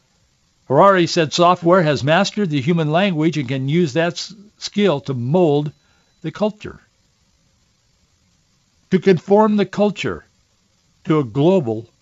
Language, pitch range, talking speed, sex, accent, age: English, 125-160 Hz, 120 wpm, male, American, 60-79